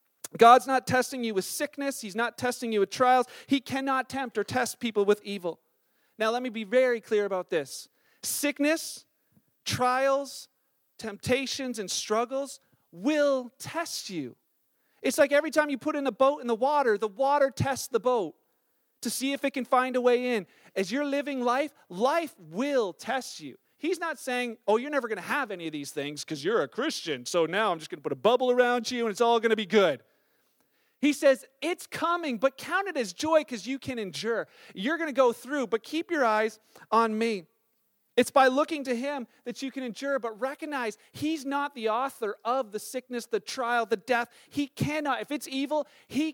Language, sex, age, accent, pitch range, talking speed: English, male, 40-59, American, 235-290 Hz, 205 wpm